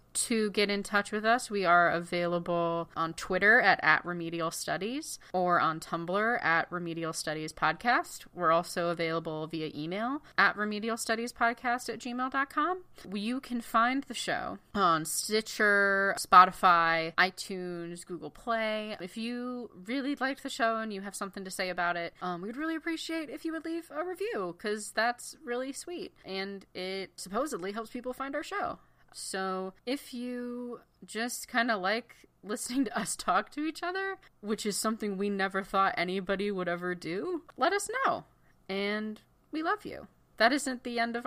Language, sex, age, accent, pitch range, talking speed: English, female, 30-49, American, 180-245 Hz, 165 wpm